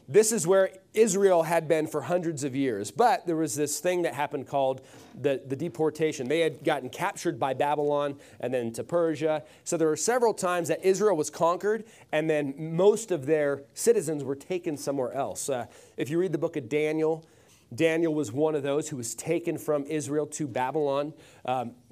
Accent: American